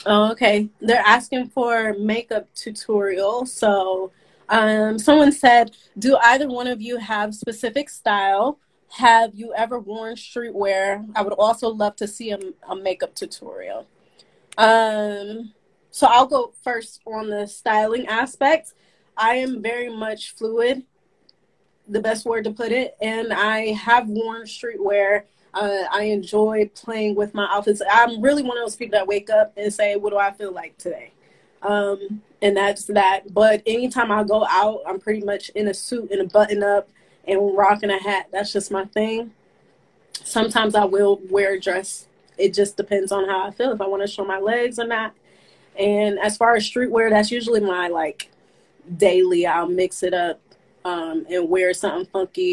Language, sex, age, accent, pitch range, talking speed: English, female, 20-39, American, 200-230 Hz, 170 wpm